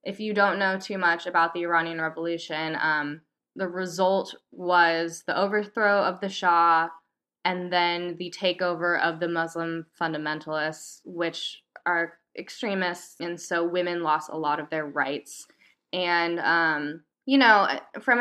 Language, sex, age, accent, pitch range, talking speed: English, female, 10-29, American, 170-210 Hz, 145 wpm